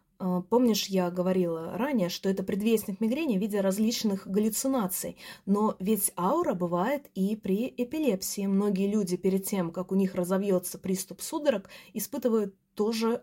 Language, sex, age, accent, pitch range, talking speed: Russian, female, 20-39, native, 180-220 Hz, 140 wpm